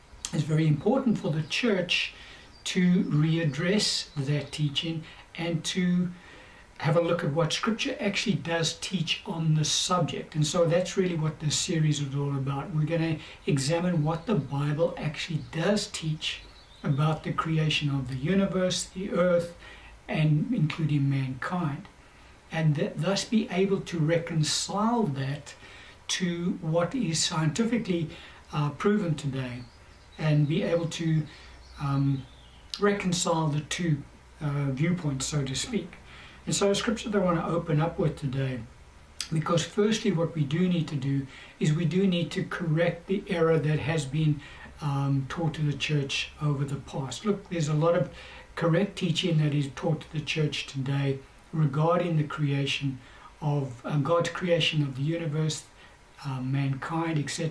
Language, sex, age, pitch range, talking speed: English, male, 60-79, 145-175 Hz, 155 wpm